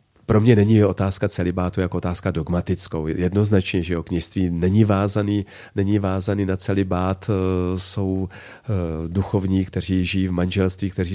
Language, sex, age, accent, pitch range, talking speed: Czech, male, 40-59, native, 90-100 Hz, 135 wpm